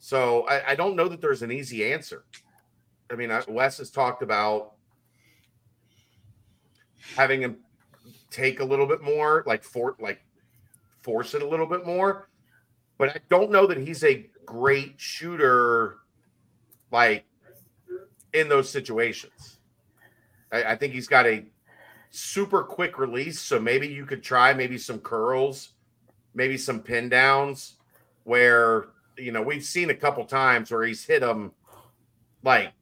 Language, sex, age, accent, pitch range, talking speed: English, male, 40-59, American, 115-155 Hz, 145 wpm